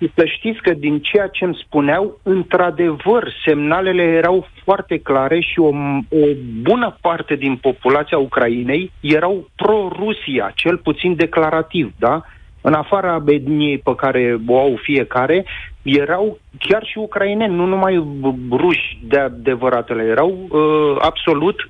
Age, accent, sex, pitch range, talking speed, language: 40-59, native, male, 125-165 Hz, 125 wpm, Romanian